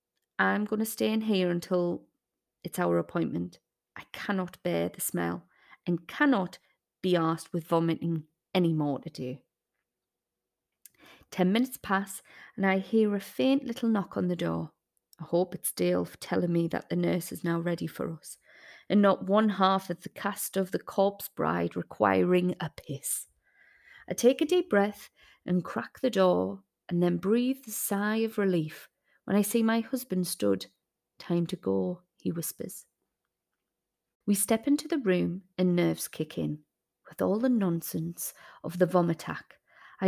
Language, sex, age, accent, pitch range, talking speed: English, female, 30-49, British, 165-210 Hz, 165 wpm